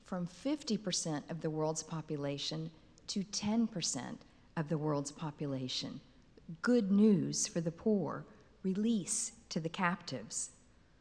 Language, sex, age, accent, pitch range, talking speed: English, female, 50-69, American, 160-210 Hz, 115 wpm